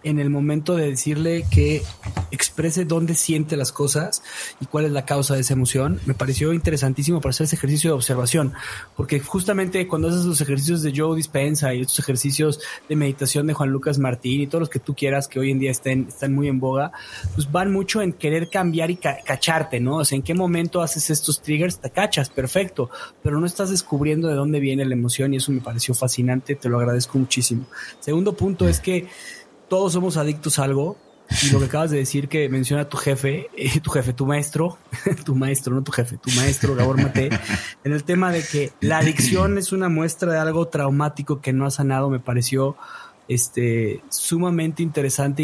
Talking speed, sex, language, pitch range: 205 wpm, male, Spanish, 130-160 Hz